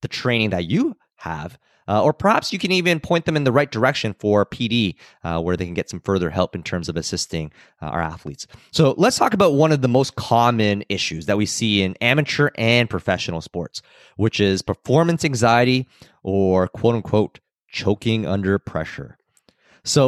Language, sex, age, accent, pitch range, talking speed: English, male, 30-49, American, 90-125 Hz, 190 wpm